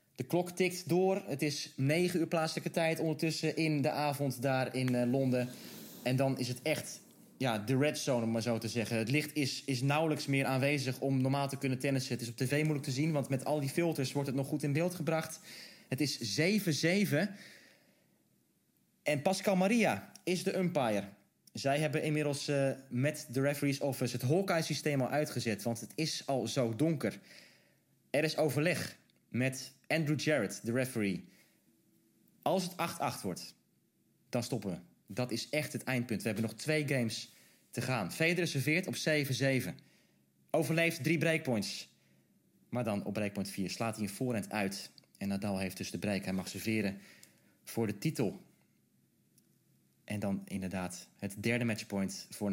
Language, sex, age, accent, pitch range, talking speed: Dutch, male, 20-39, Dutch, 115-155 Hz, 170 wpm